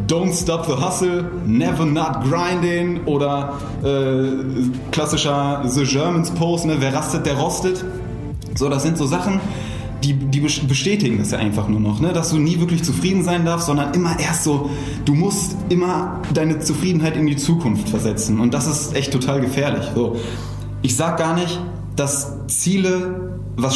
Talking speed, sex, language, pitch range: 165 wpm, male, German, 120-165 Hz